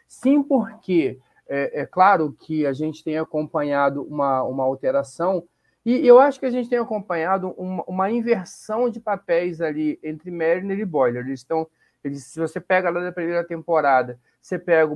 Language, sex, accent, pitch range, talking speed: Portuguese, male, Brazilian, 145-190 Hz, 175 wpm